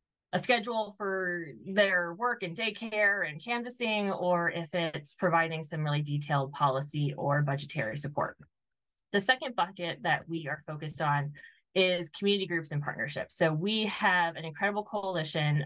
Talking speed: 150 wpm